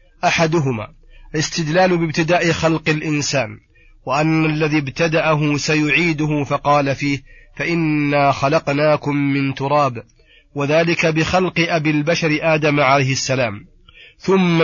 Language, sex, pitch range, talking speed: Arabic, male, 145-160 Hz, 95 wpm